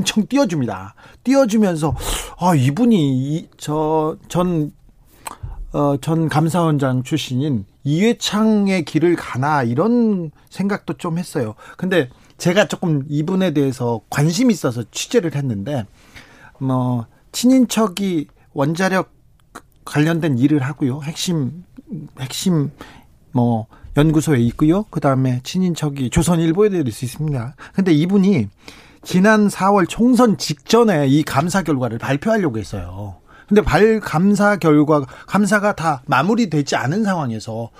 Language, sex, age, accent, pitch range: Korean, male, 40-59, native, 135-200 Hz